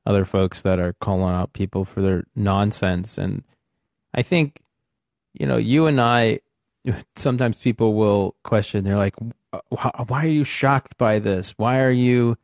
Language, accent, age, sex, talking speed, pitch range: English, American, 30-49, male, 160 wpm, 100-115 Hz